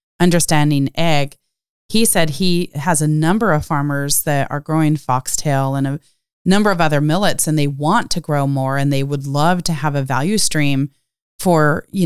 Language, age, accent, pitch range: English, 30-49, American, 140-170 Hz